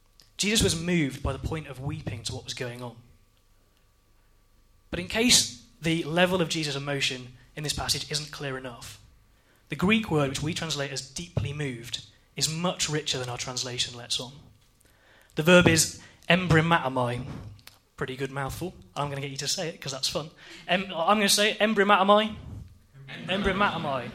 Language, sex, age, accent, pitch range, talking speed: English, male, 20-39, British, 125-170 Hz, 170 wpm